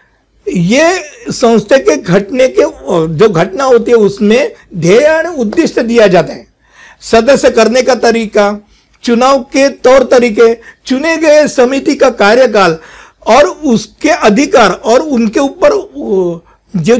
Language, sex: Hindi, male